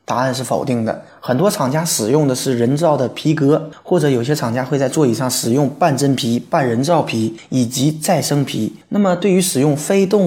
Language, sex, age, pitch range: Chinese, male, 20-39, 125-165 Hz